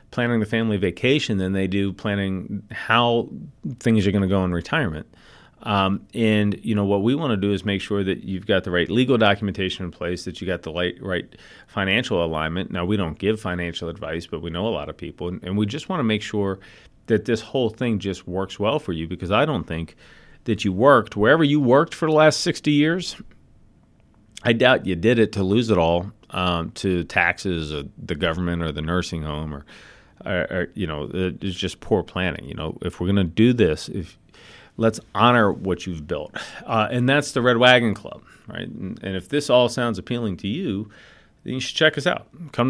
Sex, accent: male, American